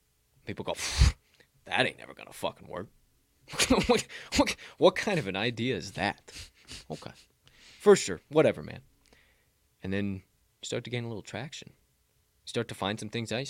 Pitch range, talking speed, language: 100-150 Hz, 175 wpm, English